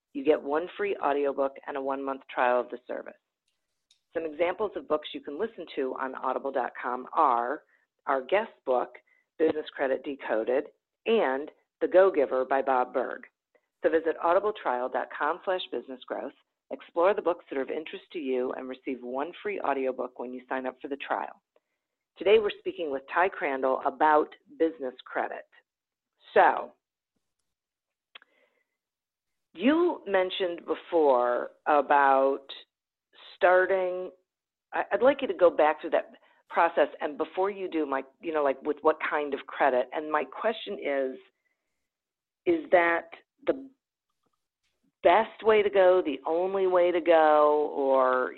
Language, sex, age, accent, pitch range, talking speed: English, female, 40-59, American, 135-185 Hz, 145 wpm